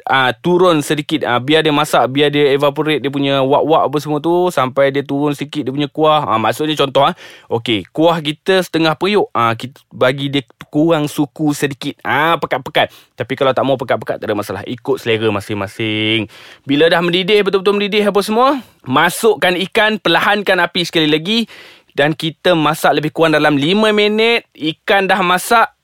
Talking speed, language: 180 wpm, Malay